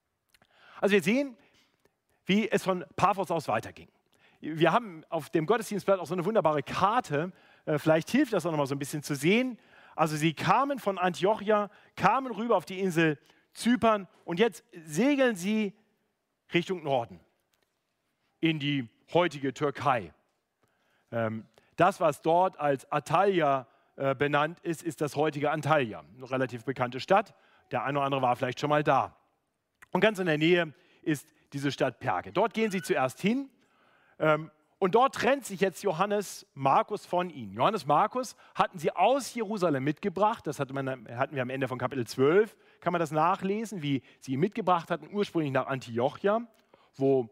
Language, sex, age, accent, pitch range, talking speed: German, male, 40-59, German, 140-205 Hz, 160 wpm